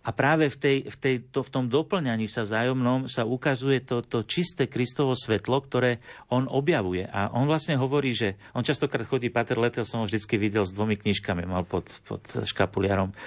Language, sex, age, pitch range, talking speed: Slovak, male, 50-69, 105-130 Hz, 195 wpm